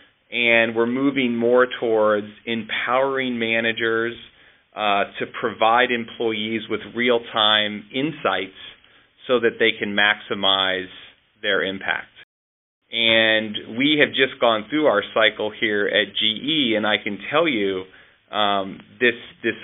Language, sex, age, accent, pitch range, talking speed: English, male, 30-49, American, 100-115 Hz, 120 wpm